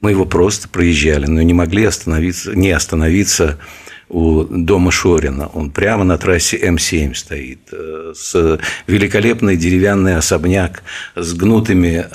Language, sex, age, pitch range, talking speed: Russian, male, 50-69, 80-100 Hz, 125 wpm